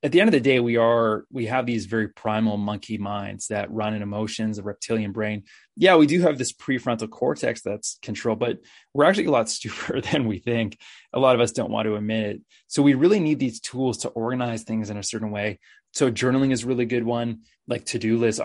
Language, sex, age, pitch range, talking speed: English, male, 20-39, 110-120 Hz, 230 wpm